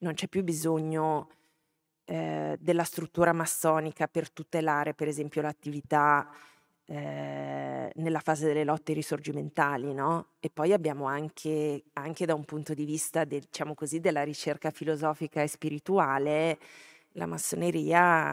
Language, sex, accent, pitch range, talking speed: Italian, female, native, 150-170 Hz, 130 wpm